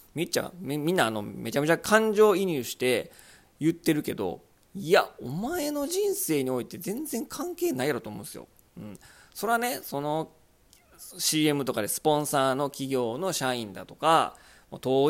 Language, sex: Japanese, male